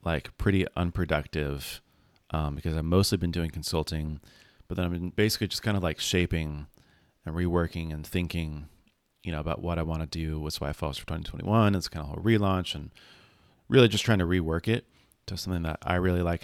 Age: 30-49